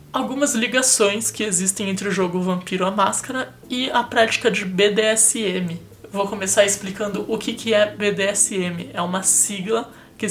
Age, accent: 20-39, Brazilian